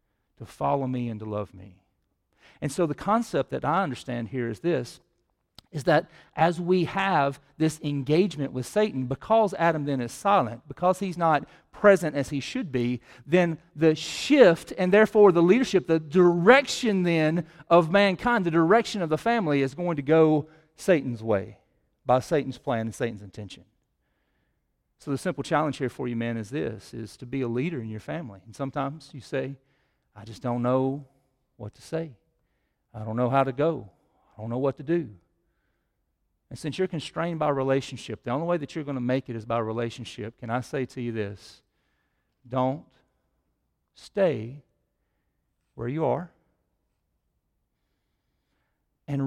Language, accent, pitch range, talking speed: English, American, 120-160 Hz, 170 wpm